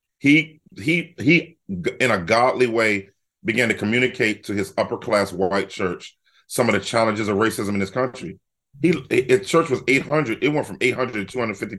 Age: 40-59